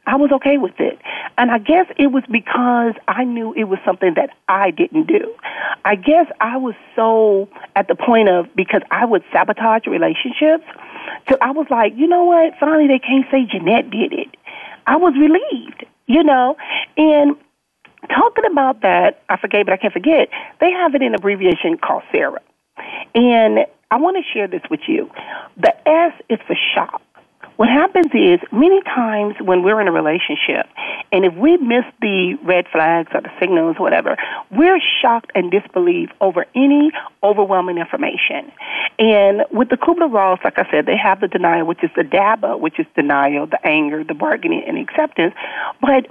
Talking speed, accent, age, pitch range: 180 wpm, American, 40-59, 200-315 Hz